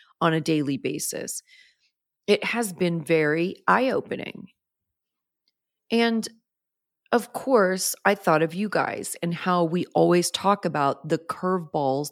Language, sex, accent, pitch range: English, female, American, 155-195 Hz